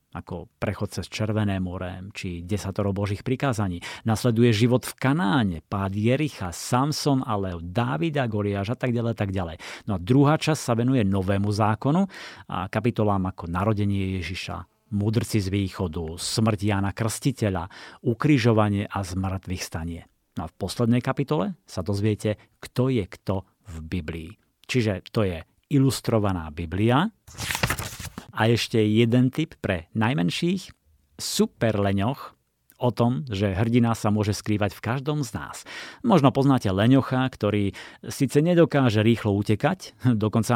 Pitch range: 95-125 Hz